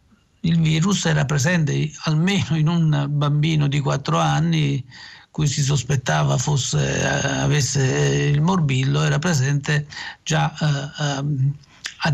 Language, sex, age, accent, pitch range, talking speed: Italian, male, 50-69, native, 140-165 Hz, 110 wpm